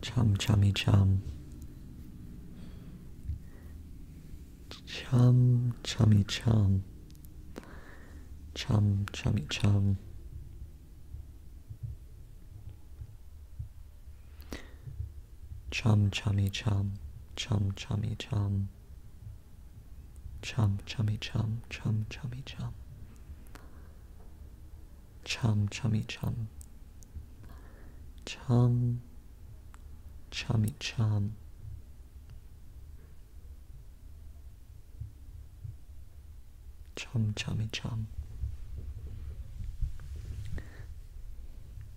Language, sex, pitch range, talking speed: English, male, 75-105 Hz, 45 wpm